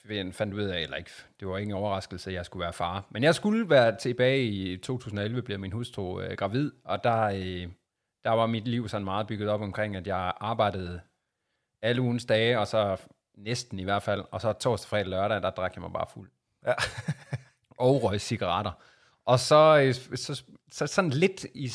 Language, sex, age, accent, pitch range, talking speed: Danish, male, 30-49, native, 100-125 Hz, 205 wpm